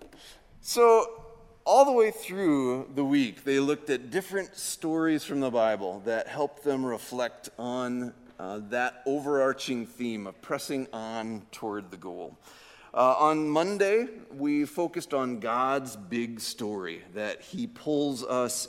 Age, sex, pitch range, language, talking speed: 40-59, male, 120-155 Hz, English, 140 wpm